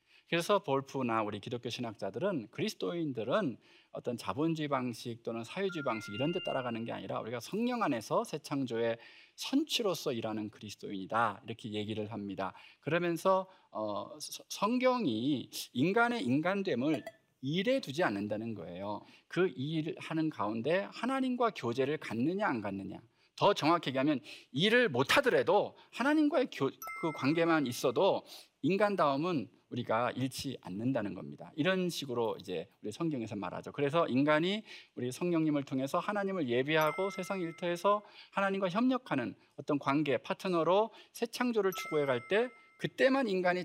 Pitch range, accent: 120-200 Hz, native